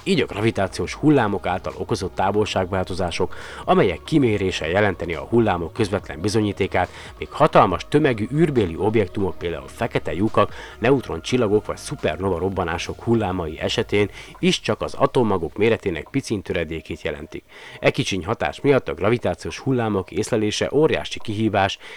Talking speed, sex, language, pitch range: 130 wpm, male, Hungarian, 85-105 Hz